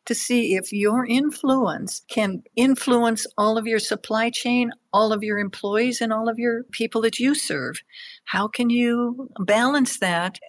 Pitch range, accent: 195-240 Hz, American